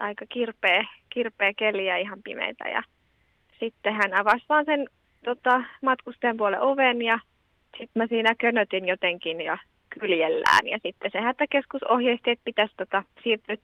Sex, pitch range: female, 210-280 Hz